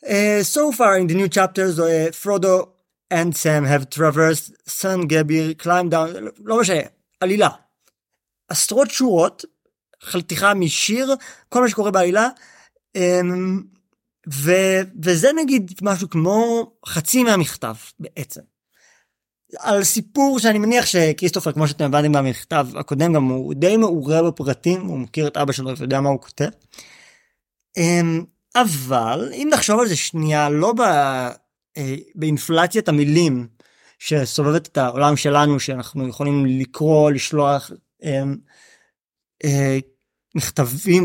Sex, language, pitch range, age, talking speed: male, Hebrew, 145-195 Hz, 30-49, 125 wpm